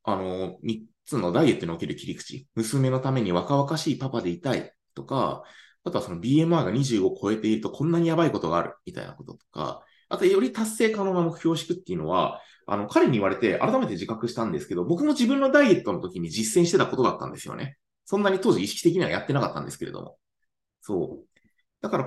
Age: 20-39